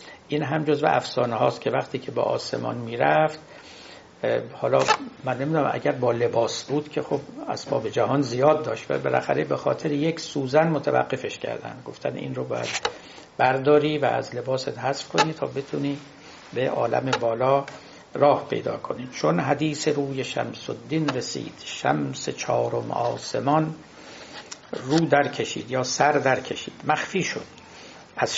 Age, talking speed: 60-79, 140 wpm